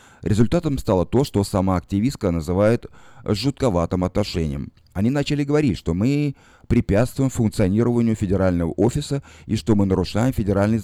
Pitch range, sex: 90-125 Hz, male